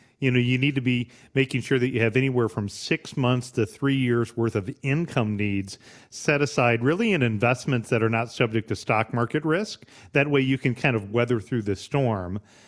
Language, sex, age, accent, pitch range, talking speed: English, male, 40-59, American, 110-135 Hz, 215 wpm